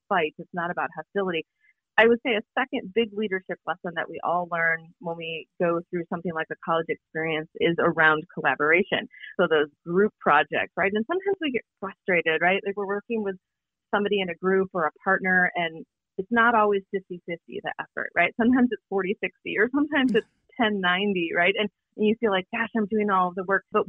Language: English